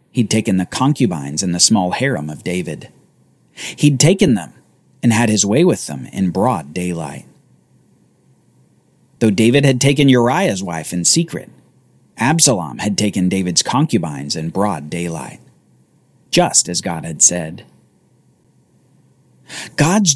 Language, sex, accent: English, male, American